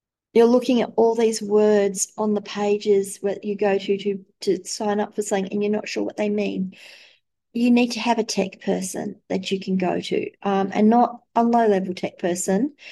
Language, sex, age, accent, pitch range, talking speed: English, female, 40-59, Australian, 185-220 Hz, 210 wpm